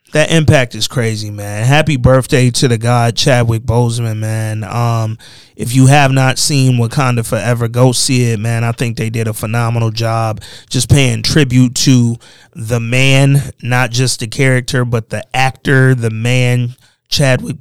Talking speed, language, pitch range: 165 wpm, English, 120-145 Hz